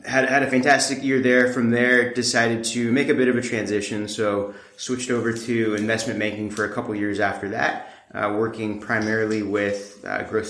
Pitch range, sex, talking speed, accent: 100-115 Hz, male, 195 wpm, American